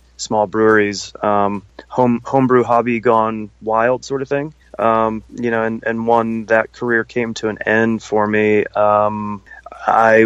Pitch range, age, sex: 105-120 Hz, 30-49, male